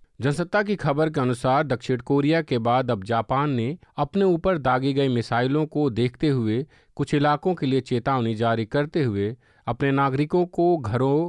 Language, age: Hindi, 50-69